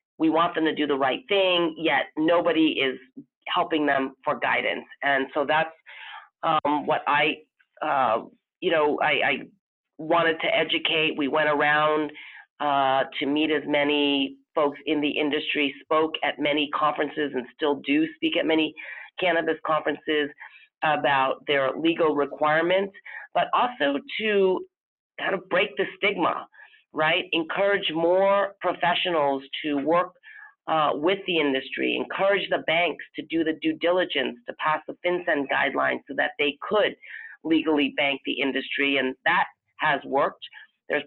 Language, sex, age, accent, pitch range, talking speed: English, female, 40-59, American, 145-175 Hz, 150 wpm